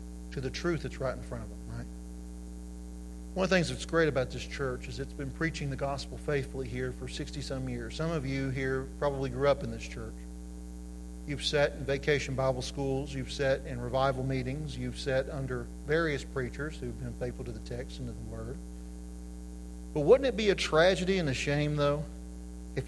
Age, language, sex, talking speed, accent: 40-59, English, male, 200 wpm, American